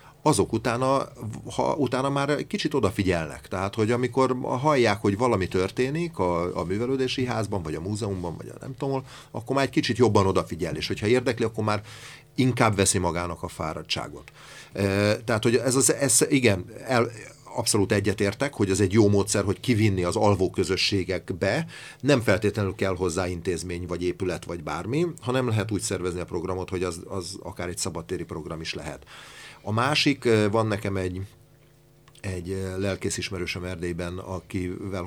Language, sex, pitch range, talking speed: Hungarian, male, 90-120 Hz, 160 wpm